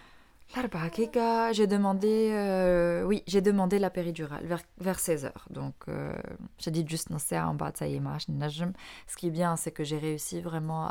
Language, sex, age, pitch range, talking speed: Arabic, female, 20-39, 155-180 Hz, 155 wpm